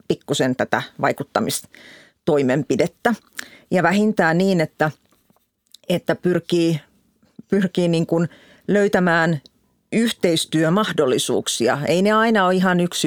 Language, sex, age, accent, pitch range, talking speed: Finnish, female, 40-59, native, 150-195 Hz, 85 wpm